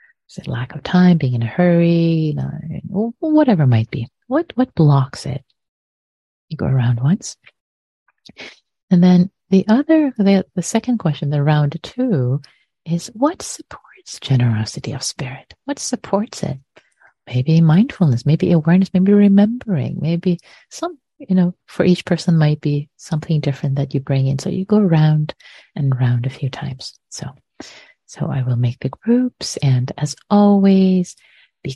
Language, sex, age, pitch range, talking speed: English, female, 30-49, 135-185 Hz, 160 wpm